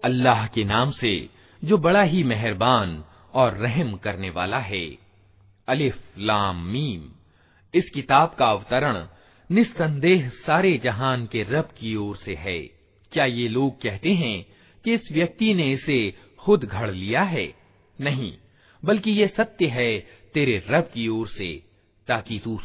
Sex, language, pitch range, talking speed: male, Hindi, 105-155 Hz, 145 wpm